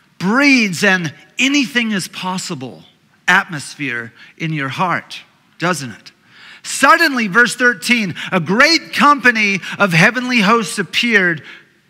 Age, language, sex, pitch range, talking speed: 40-59, English, male, 155-210 Hz, 95 wpm